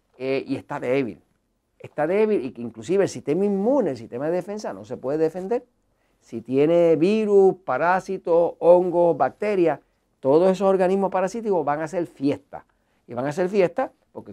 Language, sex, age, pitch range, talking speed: Spanish, male, 50-69, 140-195 Hz, 165 wpm